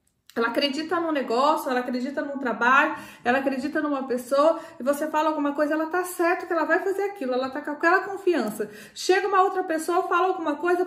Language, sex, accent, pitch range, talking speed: Portuguese, female, Brazilian, 275-355 Hz, 205 wpm